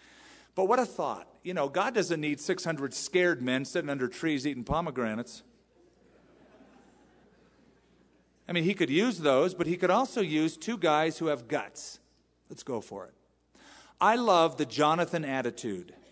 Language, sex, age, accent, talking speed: English, male, 40-59, American, 155 wpm